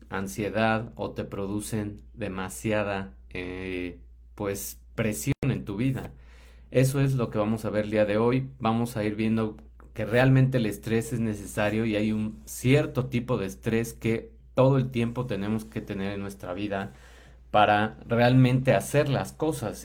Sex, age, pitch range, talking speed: male, 30-49, 100-125 Hz, 165 wpm